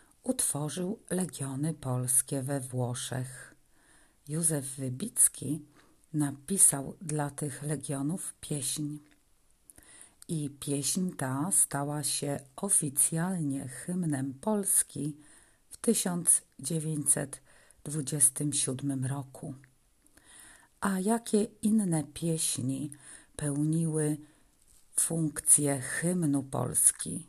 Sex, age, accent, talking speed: female, 50-69, native, 70 wpm